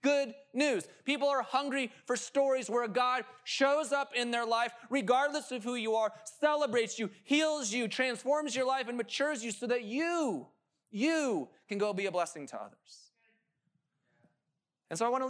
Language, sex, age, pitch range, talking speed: English, male, 20-39, 170-245 Hz, 175 wpm